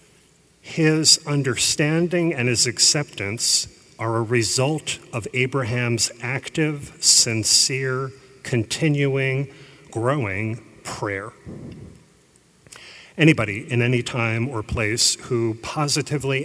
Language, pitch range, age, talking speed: English, 110-135 Hz, 40-59, 85 wpm